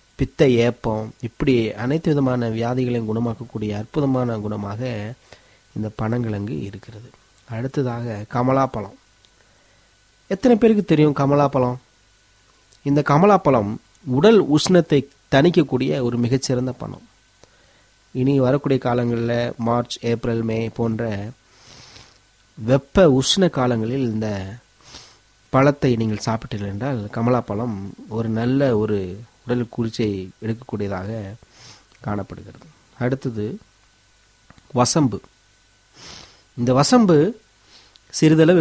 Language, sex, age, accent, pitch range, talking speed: Tamil, male, 30-49, native, 105-135 Hz, 85 wpm